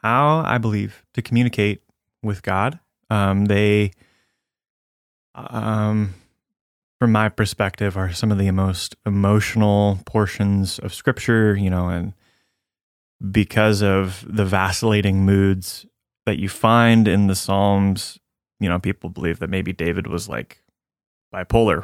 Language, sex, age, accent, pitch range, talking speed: English, male, 20-39, American, 95-115 Hz, 125 wpm